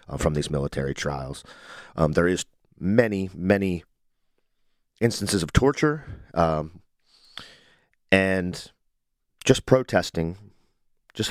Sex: male